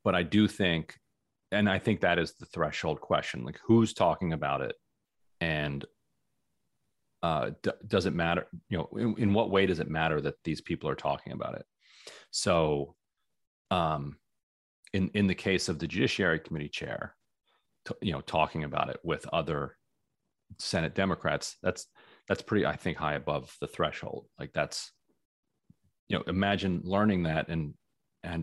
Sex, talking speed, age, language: male, 165 wpm, 30-49, English